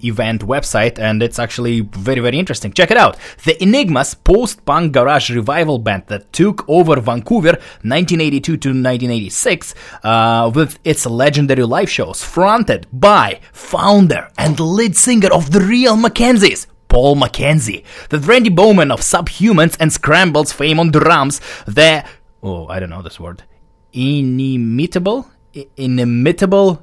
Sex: male